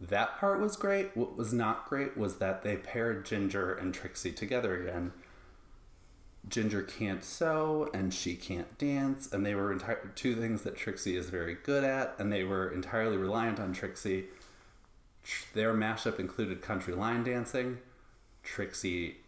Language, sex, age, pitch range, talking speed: English, male, 30-49, 95-115 Hz, 155 wpm